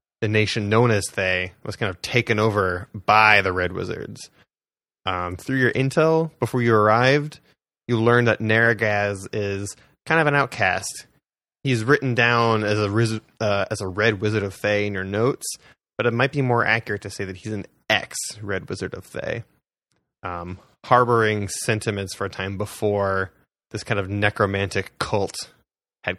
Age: 20-39